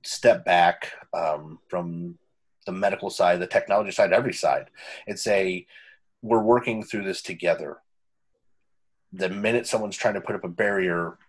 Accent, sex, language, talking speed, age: American, male, English, 150 wpm, 30-49